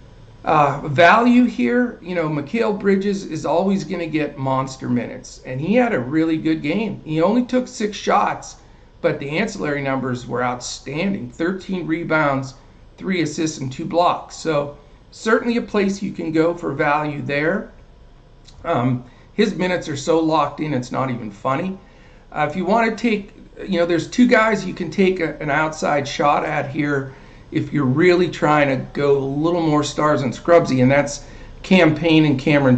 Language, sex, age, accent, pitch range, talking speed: English, male, 50-69, American, 135-170 Hz, 175 wpm